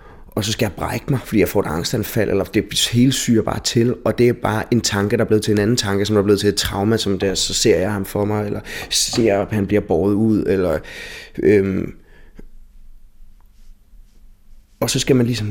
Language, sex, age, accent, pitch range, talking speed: Danish, male, 20-39, native, 95-110 Hz, 230 wpm